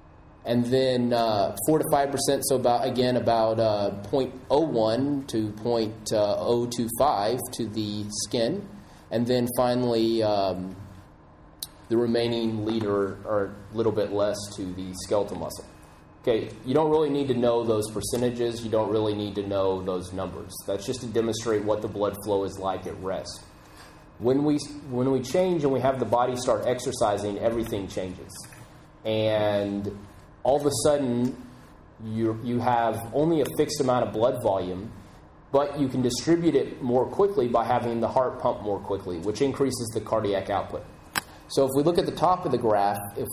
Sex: male